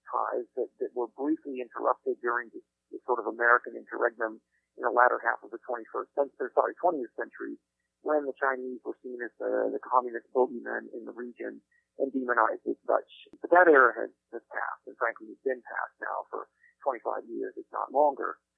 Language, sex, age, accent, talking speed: English, male, 50-69, American, 185 wpm